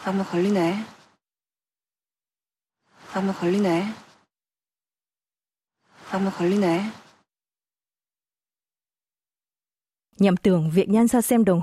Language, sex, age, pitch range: Vietnamese, female, 20-39, 175-235 Hz